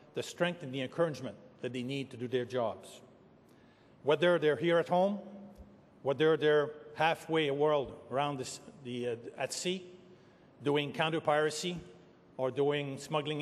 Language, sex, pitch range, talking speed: English, male, 140-170 Hz, 150 wpm